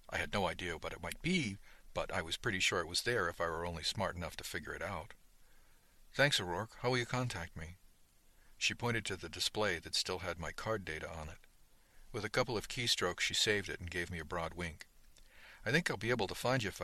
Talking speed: 245 wpm